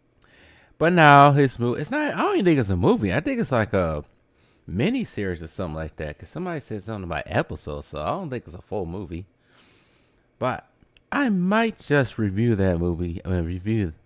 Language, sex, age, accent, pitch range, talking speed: English, male, 30-49, American, 85-120 Hz, 210 wpm